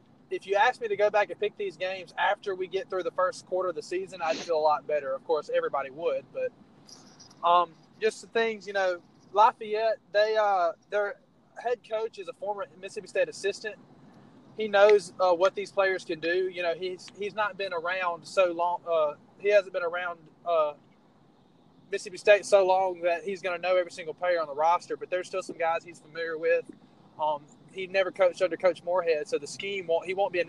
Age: 20-39